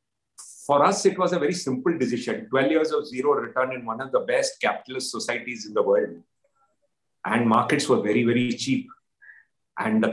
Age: 50-69